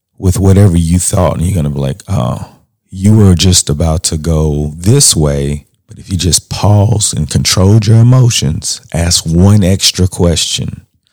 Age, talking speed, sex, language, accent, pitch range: 40-59, 175 wpm, male, English, American, 90-115 Hz